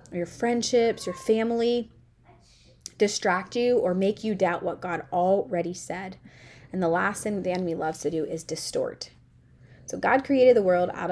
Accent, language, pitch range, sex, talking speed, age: American, English, 175-235 Hz, female, 165 wpm, 20-39